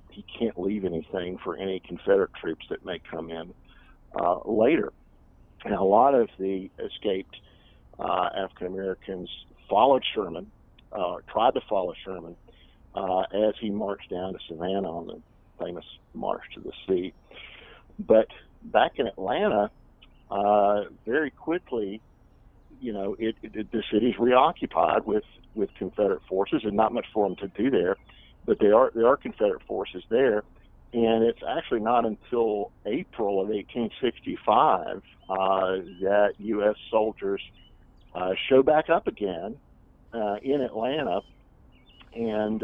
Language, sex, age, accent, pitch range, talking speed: English, male, 50-69, American, 95-115 Hz, 135 wpm